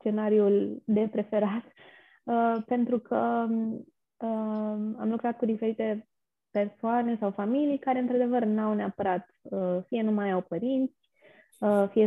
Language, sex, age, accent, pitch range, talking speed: Romanian, female, 20-39, native, 190-235 Hz, 115 wpm